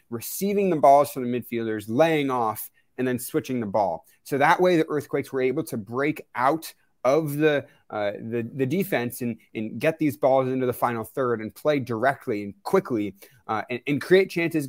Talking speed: 195 wpm